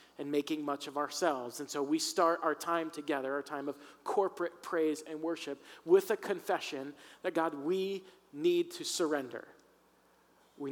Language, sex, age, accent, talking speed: English, male, 40-59, American, 160 wpm